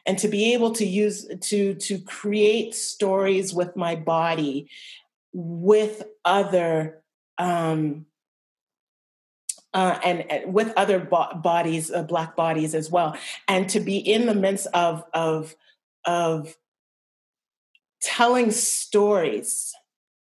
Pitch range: 170-210 Hz